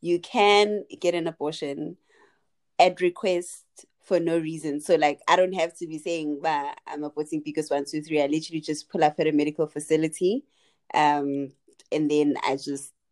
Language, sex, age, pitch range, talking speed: English, female, 20-39, 145-170 Hz, 175 wpm